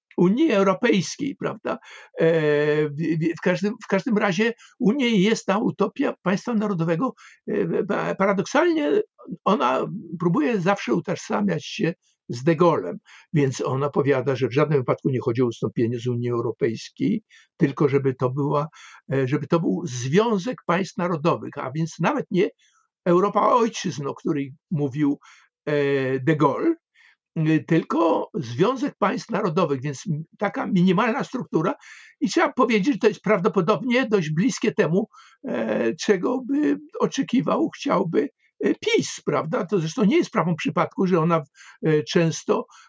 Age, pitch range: 60-79, 155-215 Hz